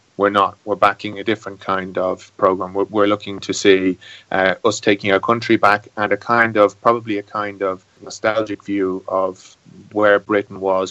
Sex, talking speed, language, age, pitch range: male, 185 wpm, English, 30-49, 95-105 Hz